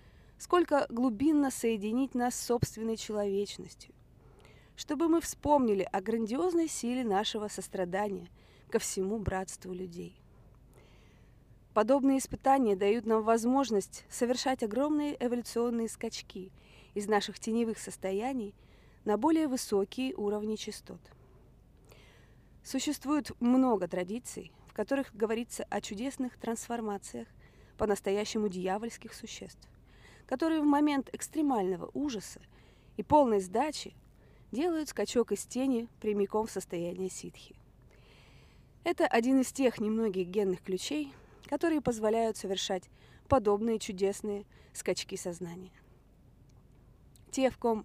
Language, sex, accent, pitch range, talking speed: Russian, female, native, 200-260 Hz, 105 wpm